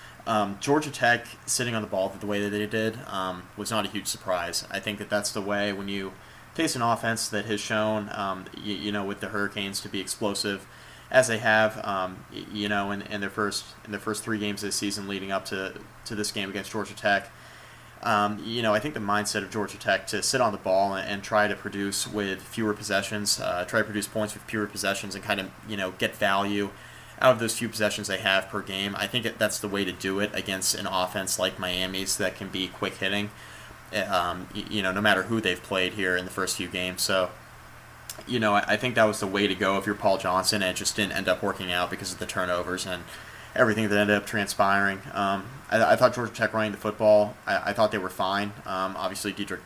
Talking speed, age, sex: 240 wpm, 20-39, male